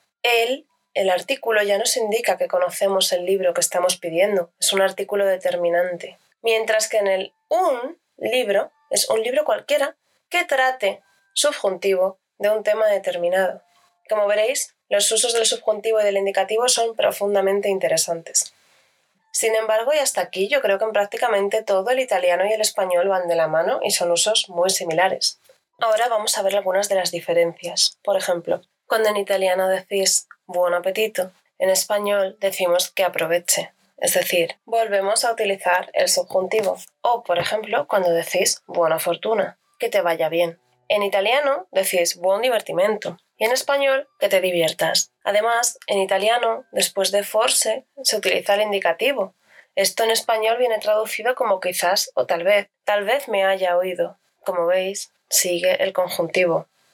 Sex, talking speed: female, 160 wpm